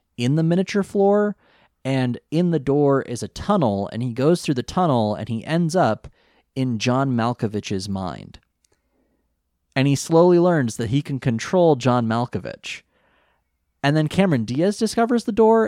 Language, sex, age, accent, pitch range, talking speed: English, male, 30-49, American, 110-155 Hz, 160 wpm